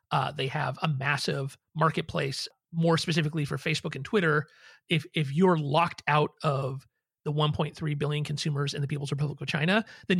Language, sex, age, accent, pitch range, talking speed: English, male, 30-49, American, 140-170 Hz, 170 wpm